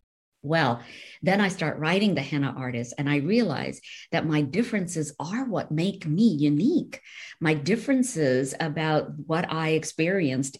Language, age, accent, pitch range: English, 50-69, American, 140-180 Hz